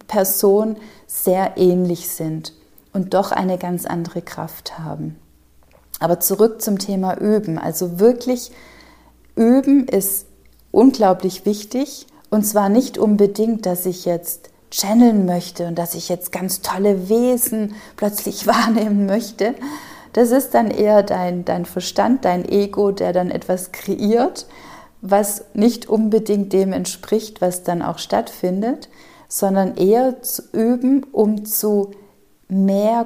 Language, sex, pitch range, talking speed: German, female, 180-215 Hz, 125 wpm